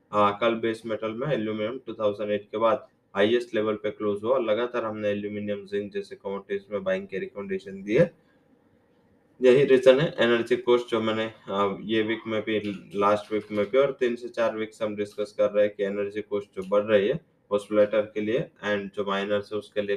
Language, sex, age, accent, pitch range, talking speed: English, male, 20-39, Indian, 100-110 Hz, 160 wpm